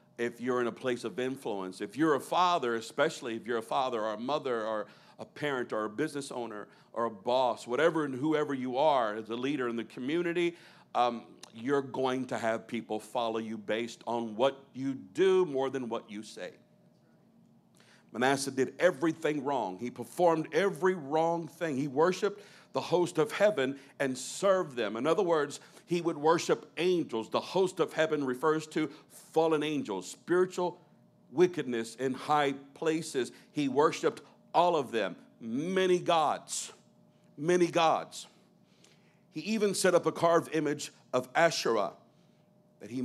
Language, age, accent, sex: English, 50-69, American, male